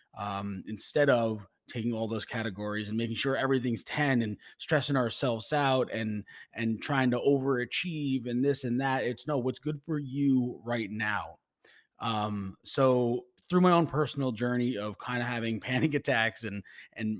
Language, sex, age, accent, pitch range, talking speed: English, male, 20-39, American, 110-135 Hz, 170 wpm